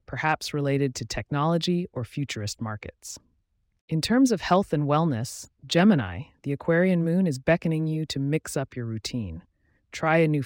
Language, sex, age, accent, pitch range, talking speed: English, female, 30-49, American, 115-165 Hz, 160 wpm